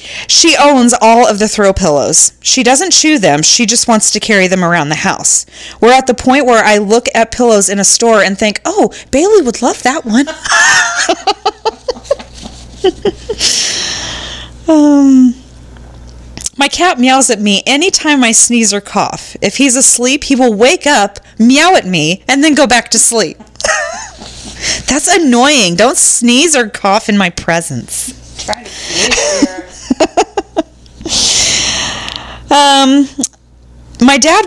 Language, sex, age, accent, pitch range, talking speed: English, female, 30-49, American, 200-280 Hz, 140 wpm